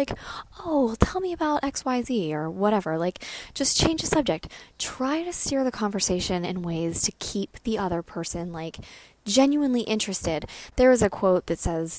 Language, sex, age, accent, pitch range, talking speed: English, female, 10-29, American, 175-220 Hz, 175 wpm